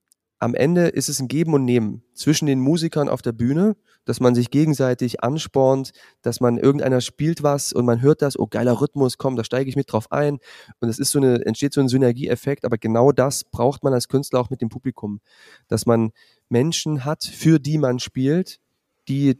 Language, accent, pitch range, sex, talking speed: German, German, 120-150 Hz, male, 200 wpm